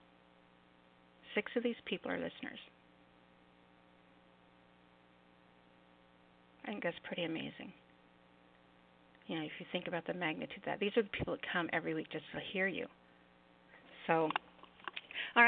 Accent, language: American, English